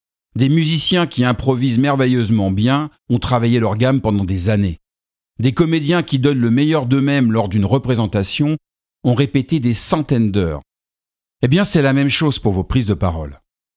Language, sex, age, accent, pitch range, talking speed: French, male, 50-69, French, 95-140 Hz, 170 wpm